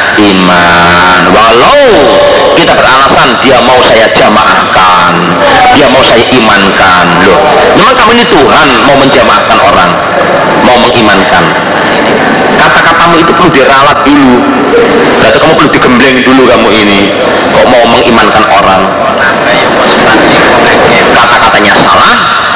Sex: male